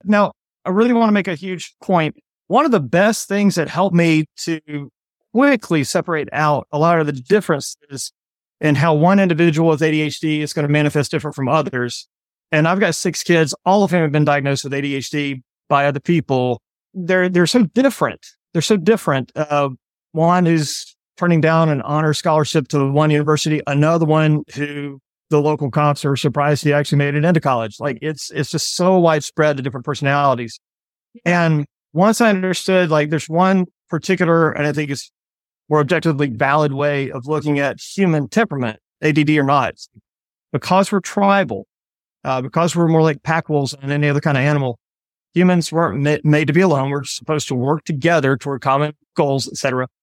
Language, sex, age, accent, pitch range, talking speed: English, male, 30-49, American, 140-170 Hz, 185 wpm